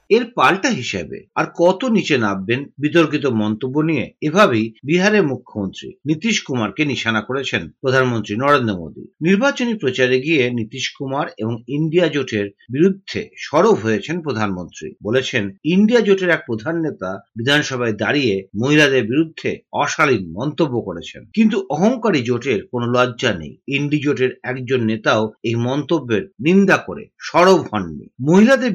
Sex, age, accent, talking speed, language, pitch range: male, 50-69, native, 130 wpm, Bengali, 115-170 Hz